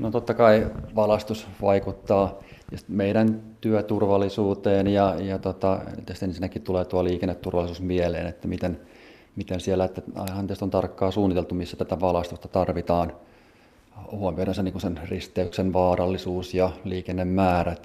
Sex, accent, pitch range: male, native, 90-100 Hz